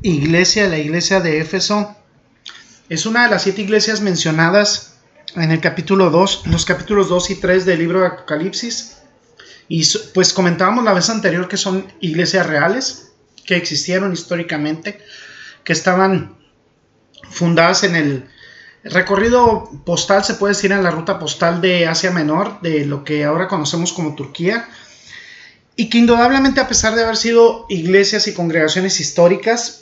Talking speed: 150 wpm